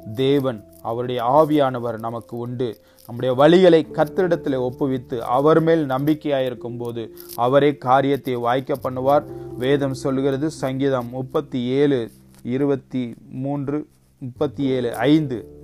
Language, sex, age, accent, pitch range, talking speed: Tamil, male, 30-49, native, 120-145 Hz, 75 wpm